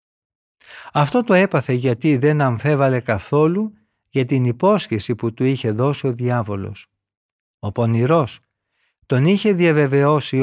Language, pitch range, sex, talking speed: Greek, 110-160 Hz, male, 120 wpm